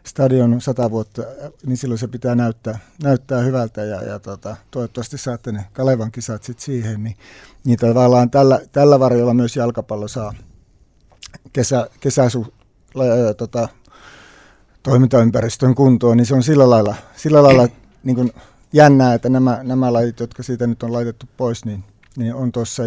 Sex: male